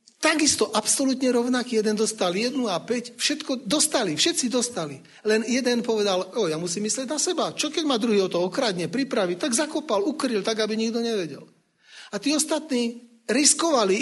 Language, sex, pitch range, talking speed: Slovak, male, 195-255 Hz, 170 wpm